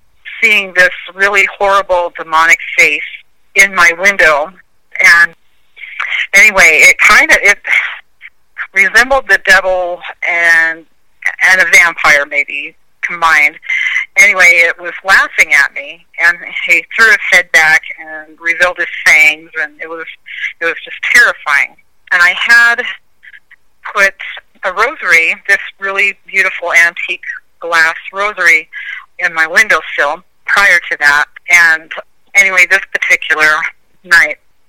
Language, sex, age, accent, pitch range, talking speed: English, female, 30-49, American, 165-195 Hz, 120 wpm